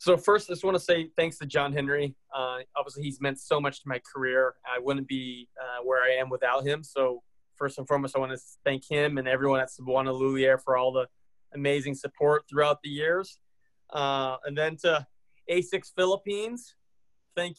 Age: 20-39